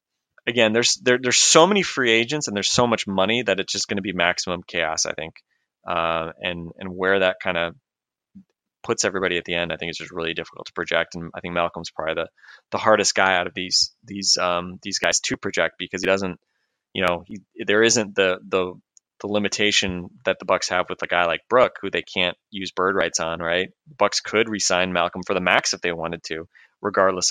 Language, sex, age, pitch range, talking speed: English, male, 20-39, 85-100 Hz, 225 wpm